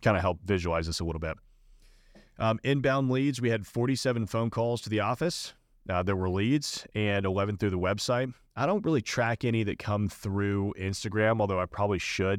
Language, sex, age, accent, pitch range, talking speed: English, male, 30-49, American, 95-115 Hz, 200 wpm